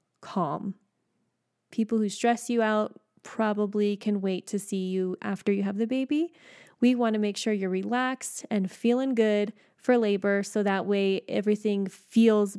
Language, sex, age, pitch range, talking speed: English, female, 20-39, 195-230 Hz, 160 wpm